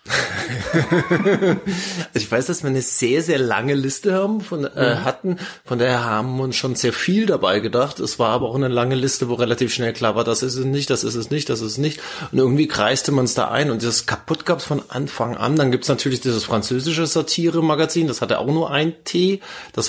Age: 20-39